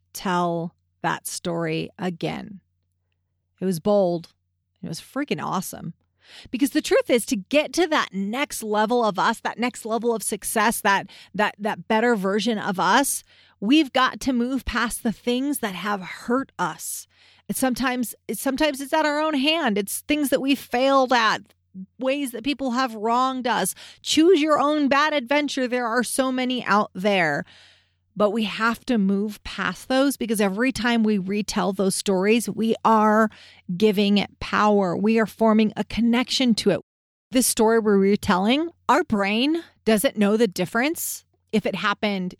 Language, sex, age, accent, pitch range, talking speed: English, female, 40-59, American, 195-255 Hz, 165 wpm